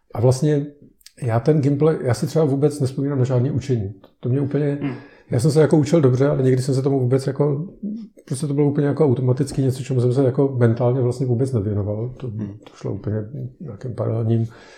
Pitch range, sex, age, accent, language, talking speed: 115-135 Hz, male, 50-69, native, Czech, 205 wpm